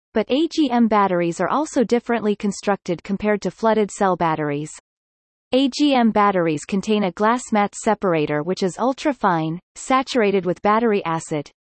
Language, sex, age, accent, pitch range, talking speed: English, female, 30-49, American, 180-245 Hz, 135 wpm